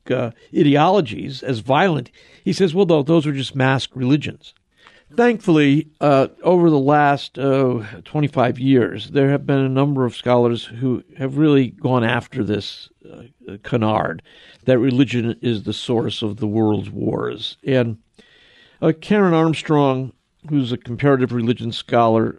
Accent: American